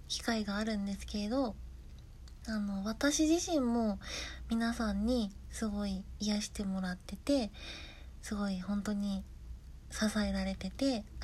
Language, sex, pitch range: Japanese, female, 195-230 Hz